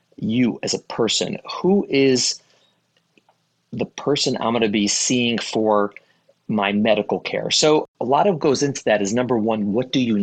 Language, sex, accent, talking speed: English, male, American, 175 wpm